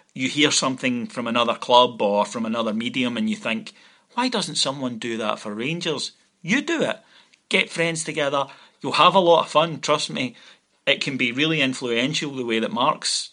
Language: English